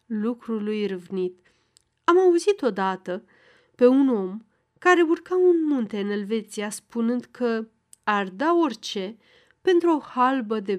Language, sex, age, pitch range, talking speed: Romanian, female, 30-49, 200-290 Hz, 130 wpm